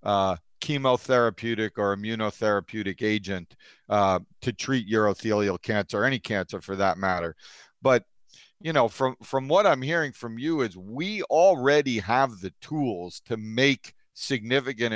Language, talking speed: English, 135 wpm